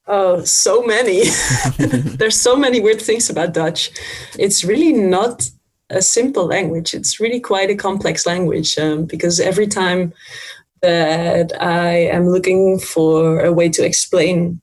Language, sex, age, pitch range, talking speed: English, female, 20-39, 165-200 Hz, 145 wpm